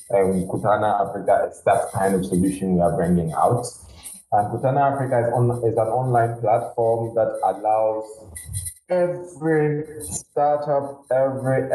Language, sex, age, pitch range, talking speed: English, male, 20-39, 105-130 Hz, 130 wpm